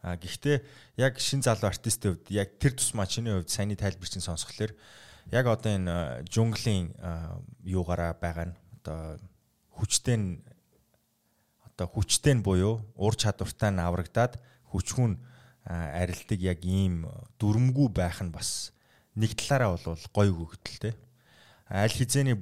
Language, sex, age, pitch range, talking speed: English, male, 20-39, 90-110 Hz, 120 wpm